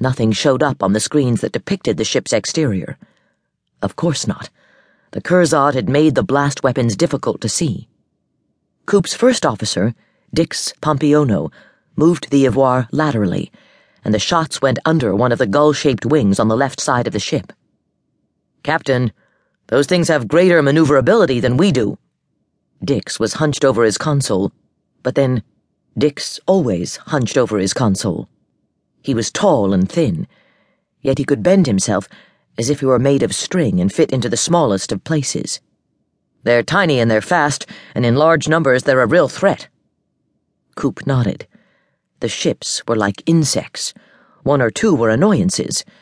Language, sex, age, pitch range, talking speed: English, female, 40-59, 120-160 Hz, 160 wpm